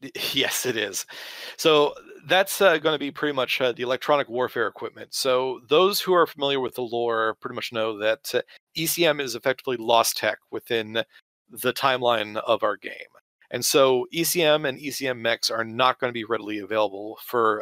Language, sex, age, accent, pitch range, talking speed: English, male, 40-59, American, 115-155 Hz, 180 wpm